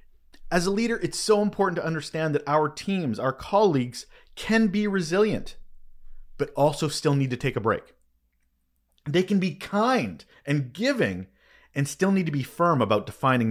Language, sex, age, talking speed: English, male, 30-49, 170 wpm